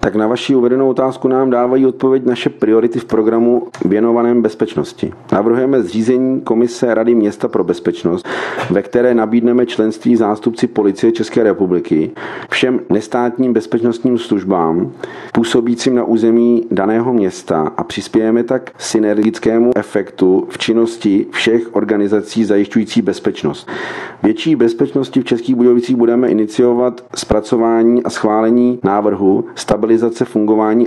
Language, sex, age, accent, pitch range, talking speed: Czech, male, 40-59, native, 105-120 Hz, 120 wpm